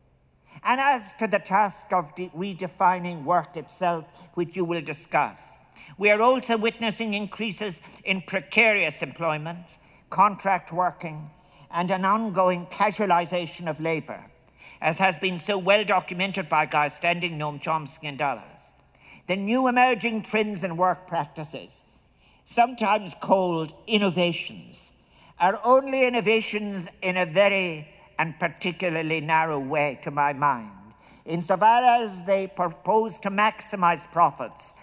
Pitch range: 165-205 Hz